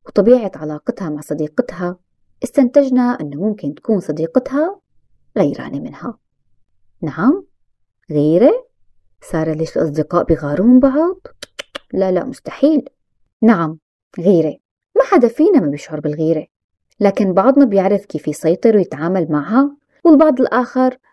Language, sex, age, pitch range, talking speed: Arabic, female, 20-39, 160-270 Hz, 110 wpm